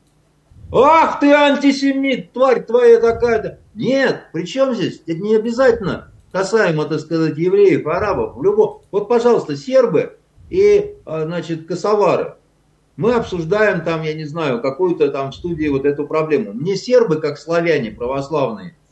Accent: native